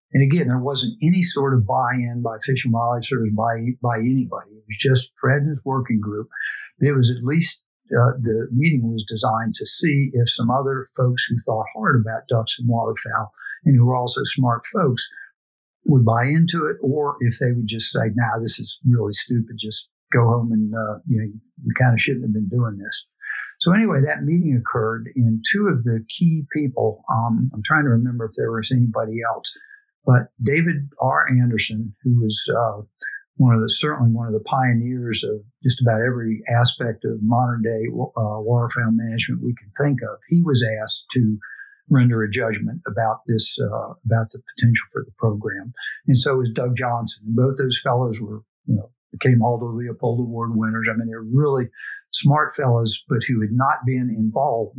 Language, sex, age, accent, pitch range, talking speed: English, male, 60-79, American, 115-135 Hz, 195 wpm